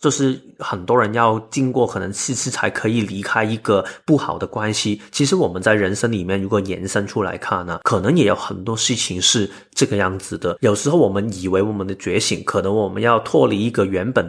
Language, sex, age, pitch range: Chinese, male, 20-39, 95-125 Hz